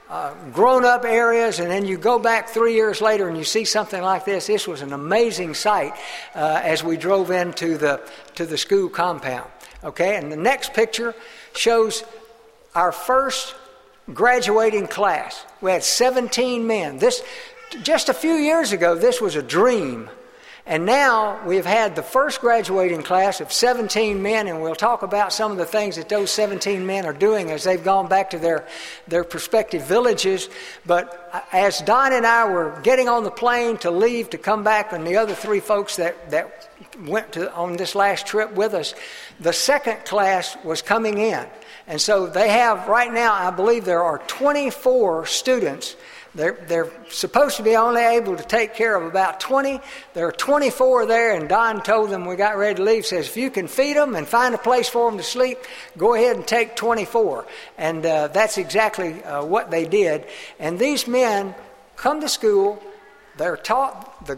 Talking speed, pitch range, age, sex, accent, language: 185 wpm, 185-250 Hz, 60-79, male, American, English